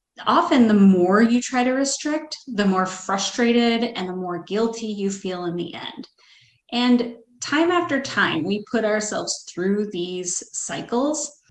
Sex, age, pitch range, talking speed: female, 30-49, 195-250 Hz, 150 wpm